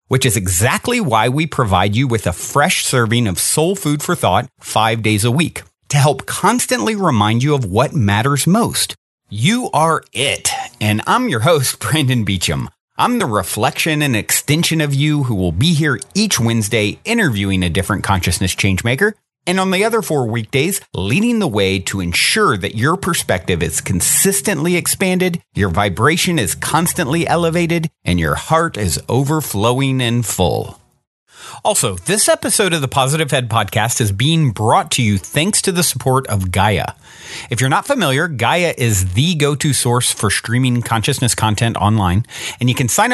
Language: English